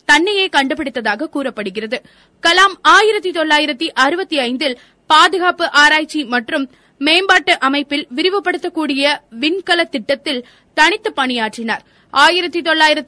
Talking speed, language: 70 wpm, Tamil